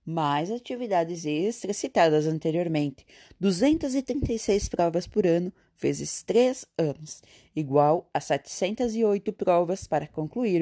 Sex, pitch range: female, 155-195 Hz